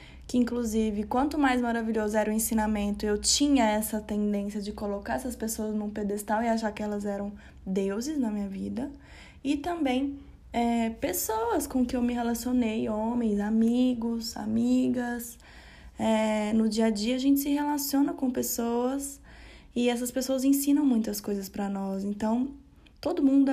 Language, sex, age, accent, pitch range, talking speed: Portuguese, female, 10-29, Brazilian, 215-275 Hz, 155 wpm